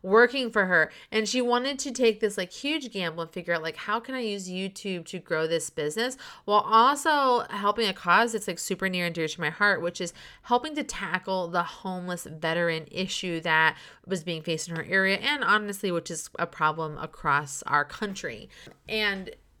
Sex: female